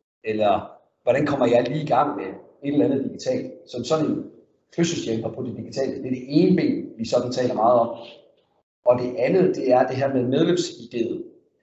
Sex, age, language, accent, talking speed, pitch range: male, 40-59, Danish, native, 200 wpm, 125-170 Hz